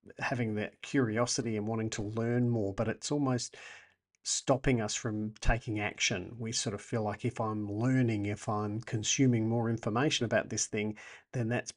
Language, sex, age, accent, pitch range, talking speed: English, male, 50-69, Australian, 110-125 Hz, 175 wpm